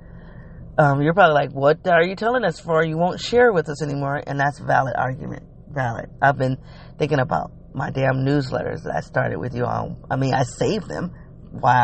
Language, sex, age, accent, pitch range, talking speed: English, female, 40-59, American, 140-165 Hz, 210 wpm